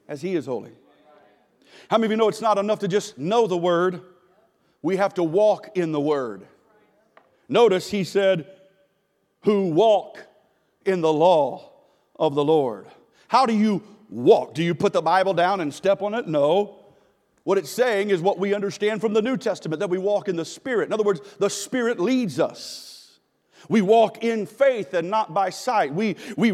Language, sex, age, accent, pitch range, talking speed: English, male, 40-59, American, 195-245 Hz, 190 wpm